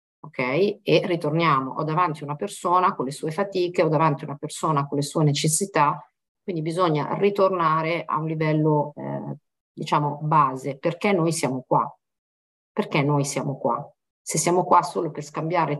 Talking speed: 165 wpm